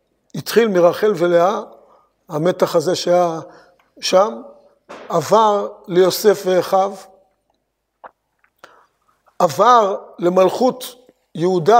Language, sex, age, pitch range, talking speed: Hebrew, male, 50-69, 175-230 Hz, 65 wpm